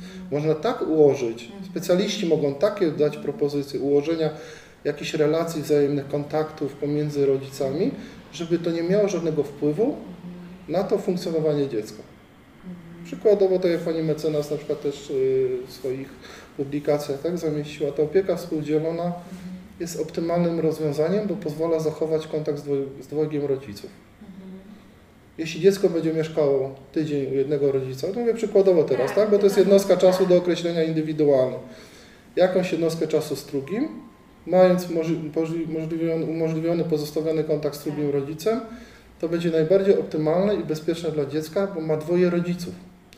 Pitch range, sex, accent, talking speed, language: 150-185 Hz, male, native, 135 wpm, Polish